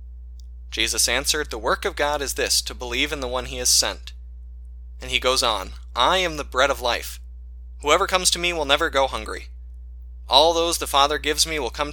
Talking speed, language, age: 210 wpm, English, 20-39